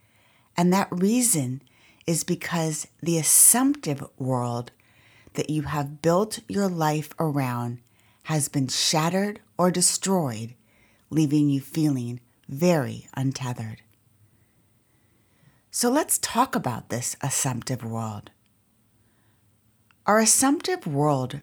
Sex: female